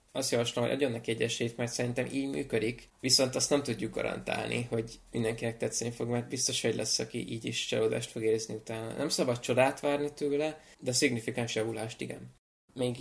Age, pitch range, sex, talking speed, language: 20-39, 115-130 Hz, male, 185 wpm, Hungarian